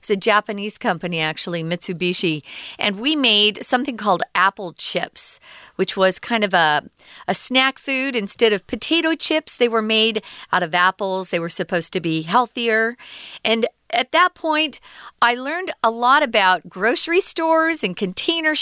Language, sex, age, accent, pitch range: Chinese, female, 40-59, American, 190-275 Hz